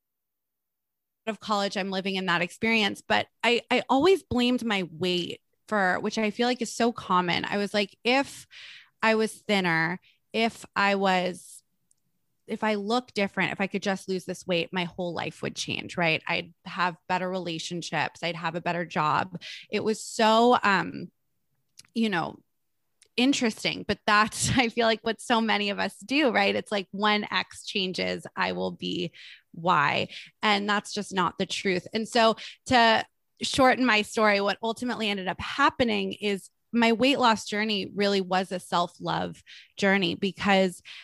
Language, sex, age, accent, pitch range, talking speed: English, female, 20-39, American, 185-225 Hz, 165 wpm